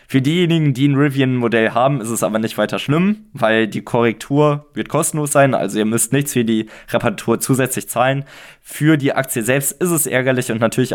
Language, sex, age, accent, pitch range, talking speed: German, male, 20-39, German, 115-145 Hz, 195 wpm